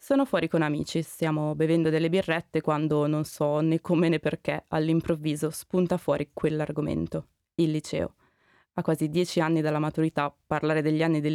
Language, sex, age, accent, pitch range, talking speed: English, female, 20-39, Italian, 145-165 Hz, 165 wpm